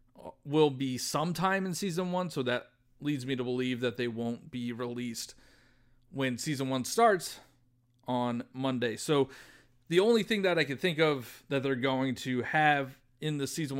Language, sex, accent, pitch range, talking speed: English, male, American, 125-150 Hz, 175 wpm